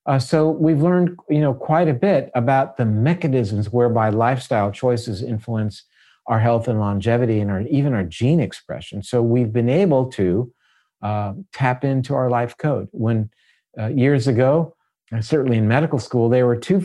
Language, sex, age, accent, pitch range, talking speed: English, male, 50-69, American, 105-135 Hz, 165 wpm